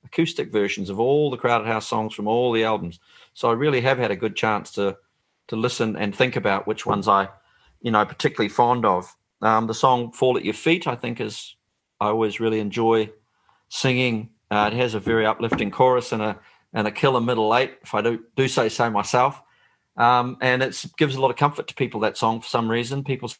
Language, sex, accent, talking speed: English, male, Australian, 220 wpm